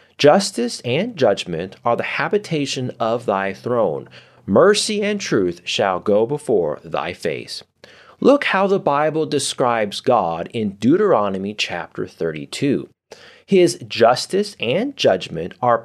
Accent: American